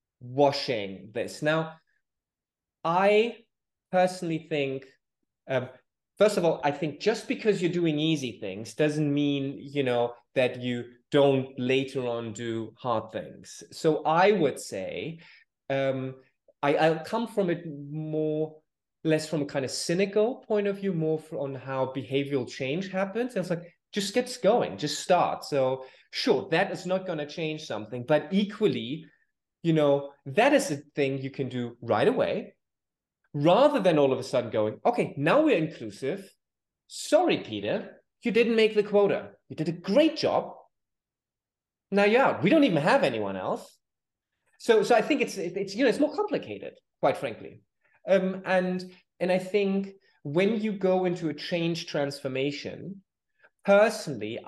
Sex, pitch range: male, 135-195 Hz